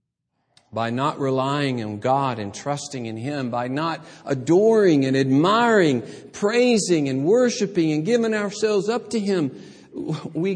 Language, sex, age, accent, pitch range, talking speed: English, male, 50-69, American, 120-160 Hz, 135 wpm